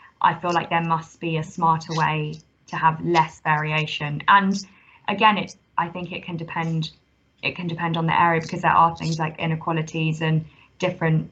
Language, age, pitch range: English, 20-39, 155-170 Hz